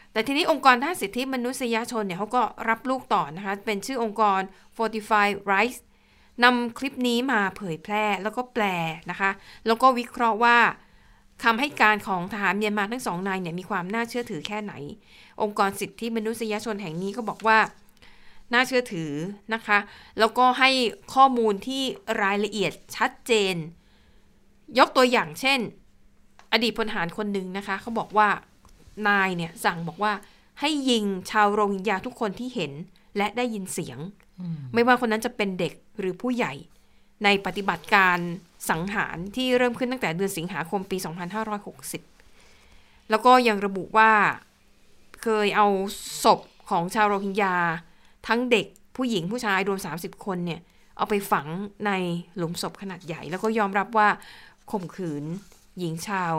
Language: Thai